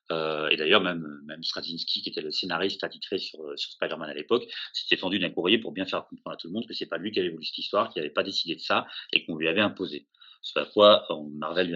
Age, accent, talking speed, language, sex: 30-49, French, 275 wpm, French, male